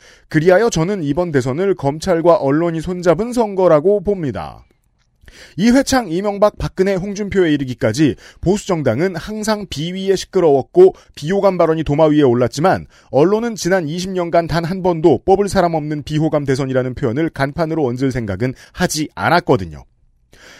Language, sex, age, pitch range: Korean, male, 40-59, 145-205 Hz